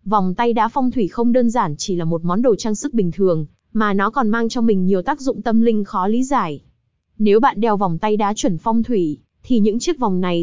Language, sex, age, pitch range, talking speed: Vietnamese, female, 20-39, 195-245 Hz, 260 wpm